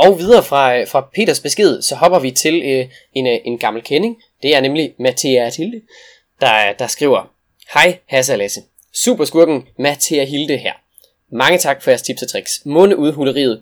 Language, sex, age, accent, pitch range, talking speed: Danish, male, 20-39, native, 130-190 Hz, 170 wpm